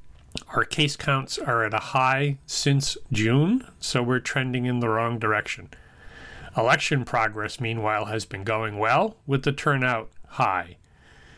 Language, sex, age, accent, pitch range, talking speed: English, male, 40-59, American, 110-140 Hz, 140 wpm